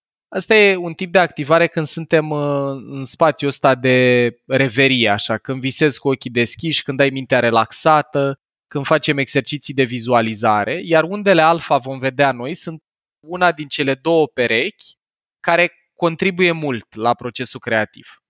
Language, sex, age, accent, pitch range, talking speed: Romanian, male, 20-39, native, 125-155 Hz, 150 wpm